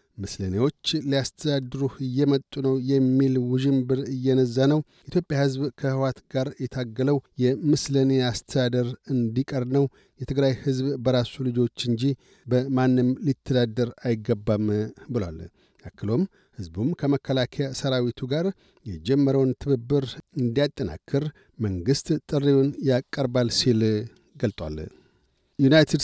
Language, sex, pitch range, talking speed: Amharic, male, 125-140 Hz, 90 wpm